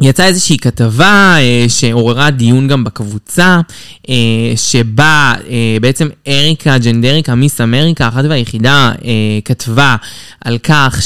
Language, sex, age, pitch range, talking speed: Hebrew, male, 20-39, 125-165 Hz, 115 wpm